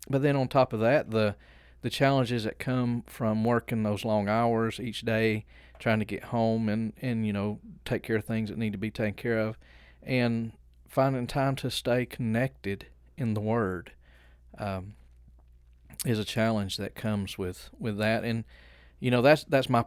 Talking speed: 185 wpm